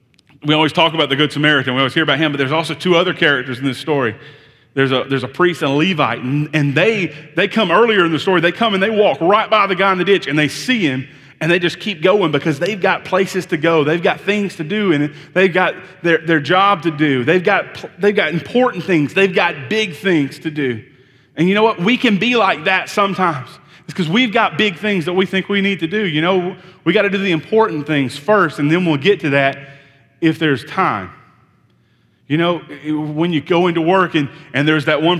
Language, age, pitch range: English, 30-49, 140-180 Hz